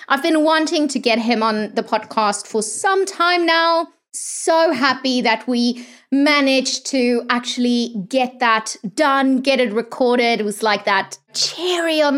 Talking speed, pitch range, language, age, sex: 160 wpm, 225-310 Hz, English, 20-39, female